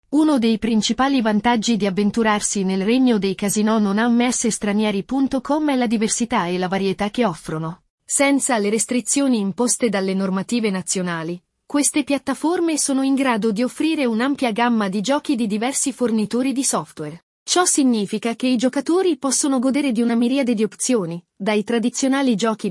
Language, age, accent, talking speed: Italian, 30-49, native, 155 wpm